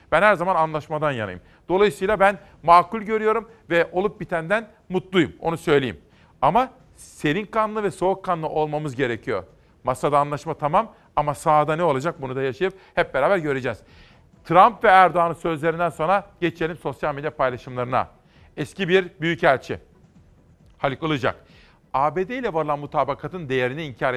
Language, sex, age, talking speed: Turkish, male, 40-59, 140 wpm